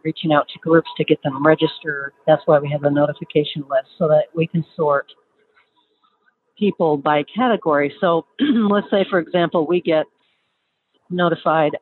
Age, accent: 50-69, American